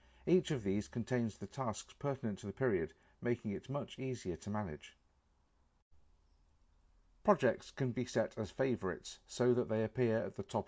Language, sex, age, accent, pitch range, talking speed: English, male, 50-69, British, 95-130 Hz, 165 wpm